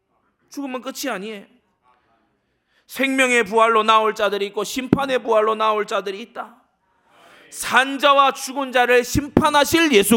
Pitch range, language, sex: 180-235 Hz, Korean, male